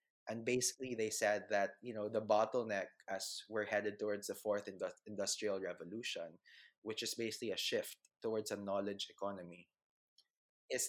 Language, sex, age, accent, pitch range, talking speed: English, male, 20-39, Filipino, 105-125 Hz, 150 wpm